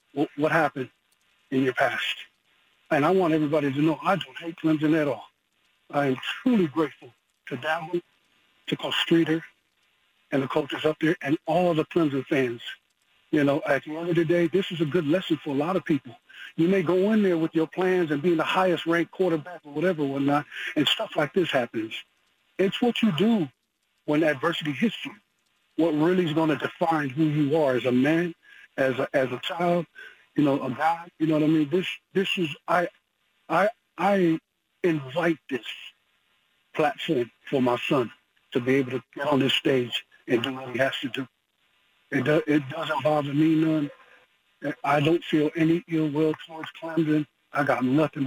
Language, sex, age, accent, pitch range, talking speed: English, male, 50-69, American, 145-175 Hz, 195 wpm